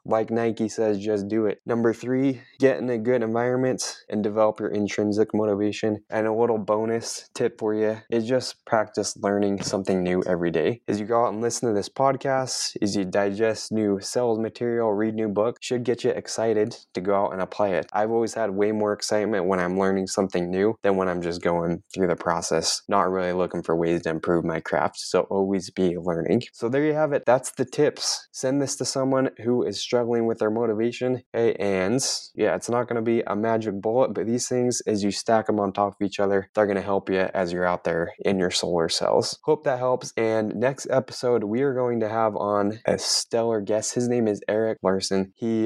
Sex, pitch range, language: male, 100-120 Hz, English